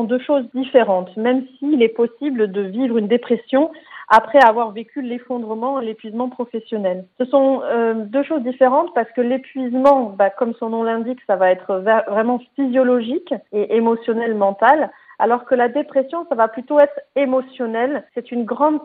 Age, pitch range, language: 40-59, 210-265 Hz, French